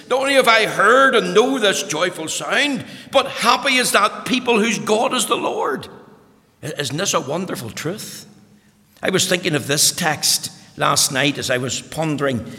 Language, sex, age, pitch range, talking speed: English, male, 60-79, 130-180 Hz, 175 wpm